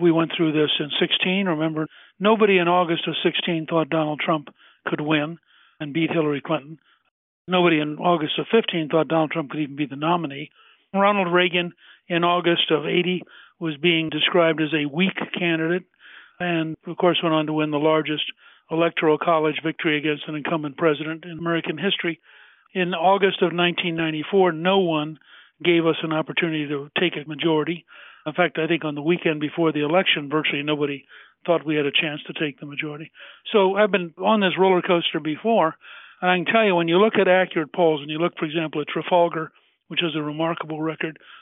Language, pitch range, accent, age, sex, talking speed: English, 155-180 Hz, American, 60-79, male, 190 wpm